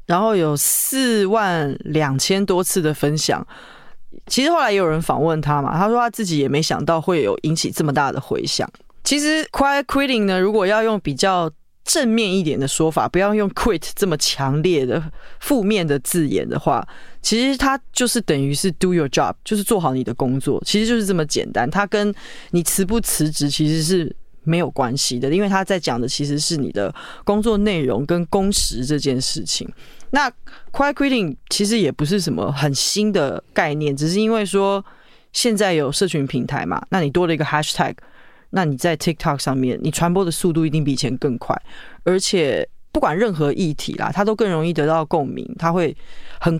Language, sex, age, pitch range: Chinese, female, 20-39, 150-205 Hz